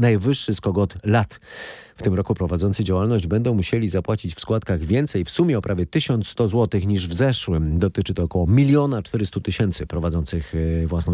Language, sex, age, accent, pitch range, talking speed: Polish, male, 30-49, native, 90-125 Hz, 170 wpm